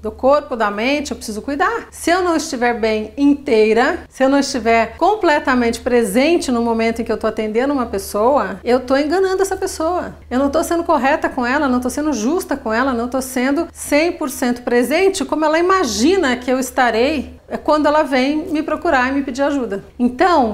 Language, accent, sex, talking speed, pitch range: Portuguese, Brazilian, female, 200 wpm, 225-290 Hz